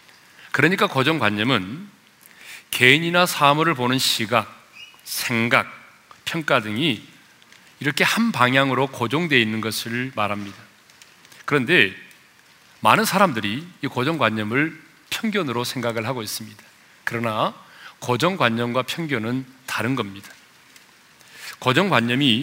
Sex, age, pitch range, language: male, 40-59, 115-150 Hz, Korean